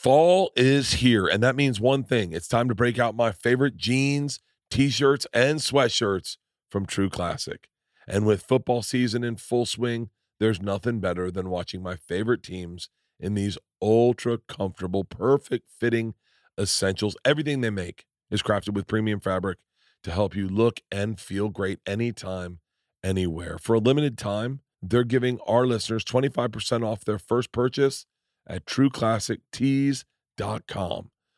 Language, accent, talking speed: English, American, 140 wpm